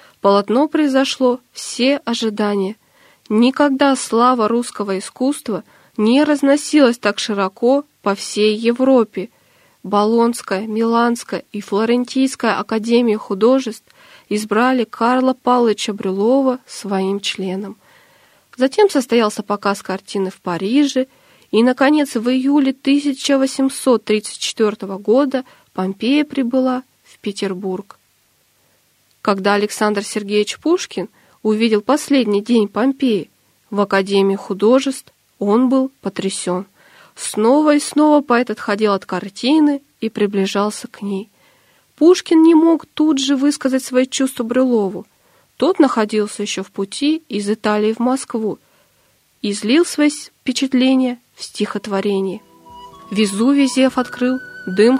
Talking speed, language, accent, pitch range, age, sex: 105 wpm, Russian, native, 205-265 Hz, 20-39, female